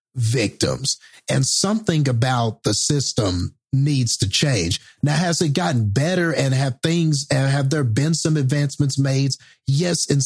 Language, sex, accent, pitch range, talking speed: English, male, American, 125-145 Hz, 150 wpm